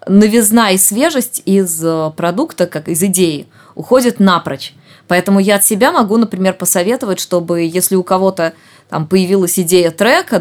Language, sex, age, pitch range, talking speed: Russian, female, 20-39, 165-205 Hz, 145 wpm